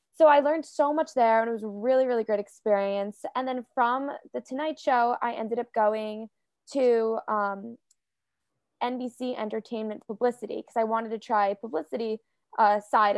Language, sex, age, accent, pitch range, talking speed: English, female, 10-29, American, 210-260 Hz, 170 wpm